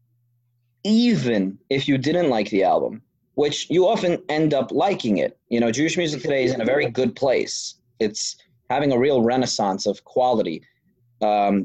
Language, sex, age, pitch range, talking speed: English, male, 30-49, 115-150 Hz, 170 wpm